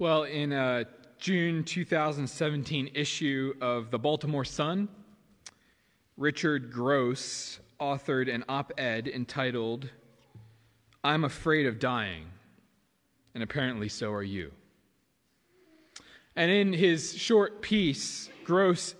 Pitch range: 130-180 Hz